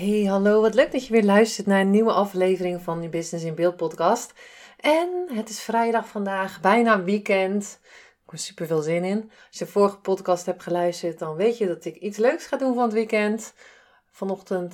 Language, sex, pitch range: Dutch, female, 175-220 Hz